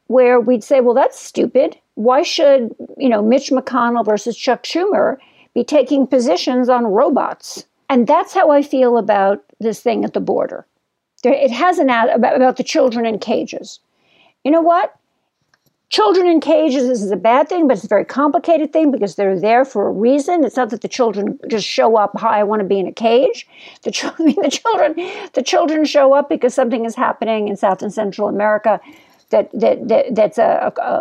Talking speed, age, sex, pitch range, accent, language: 205 wpm, 50-69, female, 230-300 Hz, American, English